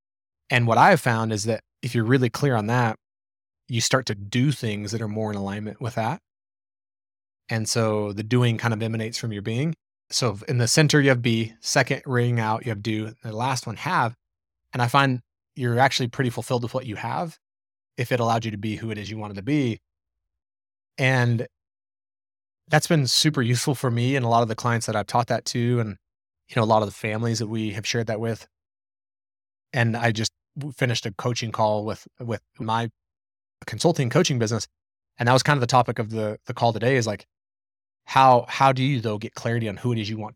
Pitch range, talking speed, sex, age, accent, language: 105-130 Hz, 220 wpm, male, 20-39, American, English